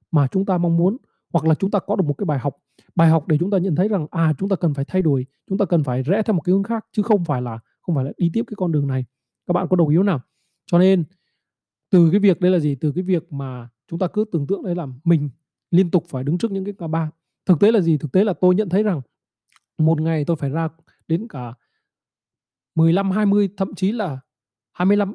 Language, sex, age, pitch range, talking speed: Vietnamese, male, 20-39, 155-200 Hz, 270 wpm